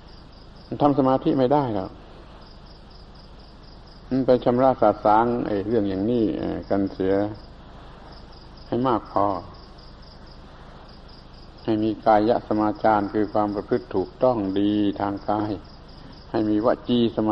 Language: Thai